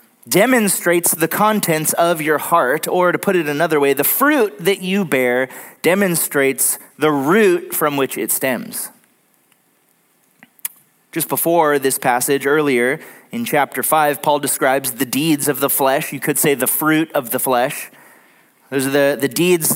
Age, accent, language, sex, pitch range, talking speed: 30-49, American, English, male, 140-175 Hz, 160 wpm